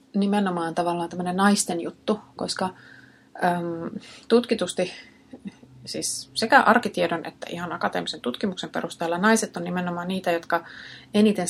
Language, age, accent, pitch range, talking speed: Finnish, 30-49, native, 165-195 Hz, 105 wpm